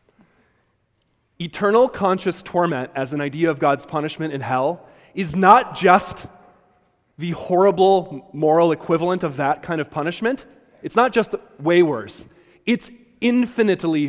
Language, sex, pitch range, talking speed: English, male, 135-180 Hz, 130 wpm